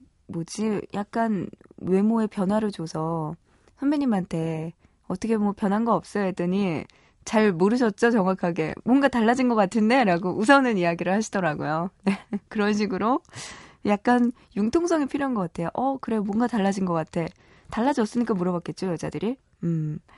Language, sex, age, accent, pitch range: Korean, female, 20-39, native, 180-235 Hz